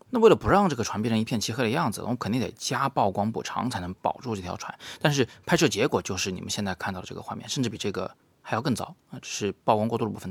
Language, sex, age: Chinese, male, 30-49